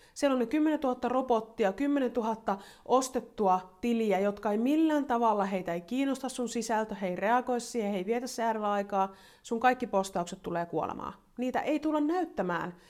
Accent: native